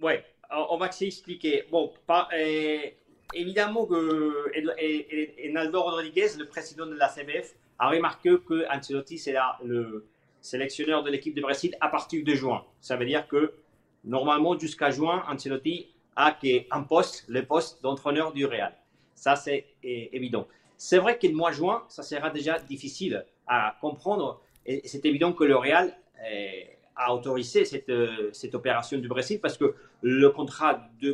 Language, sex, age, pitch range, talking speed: French, male, 40-59, 135-175 Hz, 170 wpm